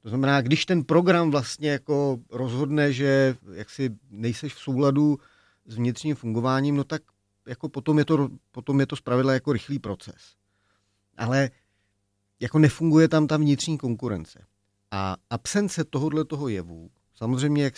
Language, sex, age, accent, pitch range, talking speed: Czech, male, 40-59, native, 100-140 Hz, 145 wpm